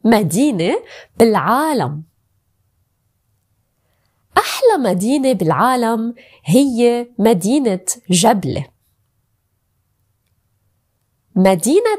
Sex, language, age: female, Arabic, 20-39